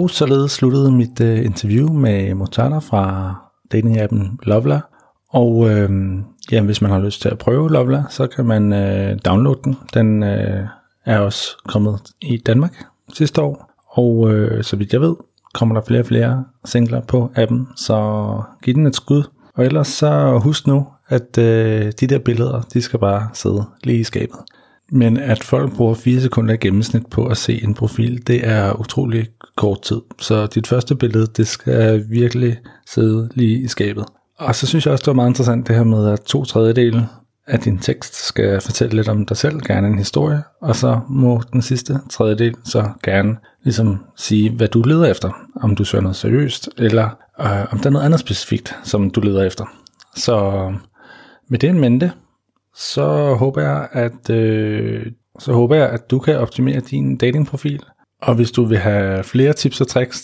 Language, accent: Danish, native